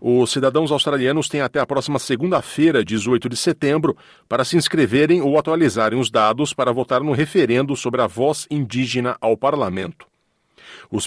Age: 40-59